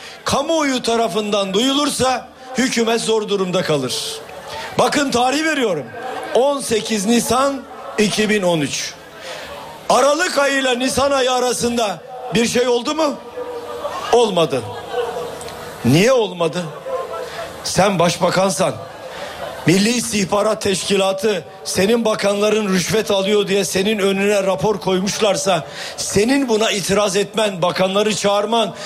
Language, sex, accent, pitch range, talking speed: Turkish, male, native, 205-275 Hz, 95 wpm